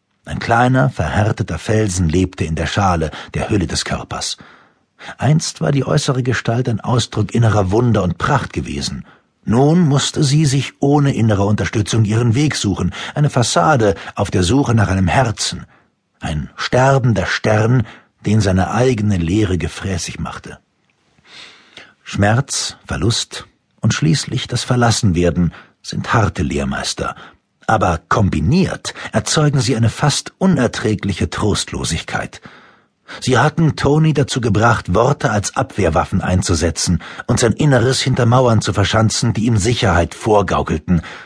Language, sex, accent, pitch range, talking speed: German, male, German, 95-130 Hz, 130 wpm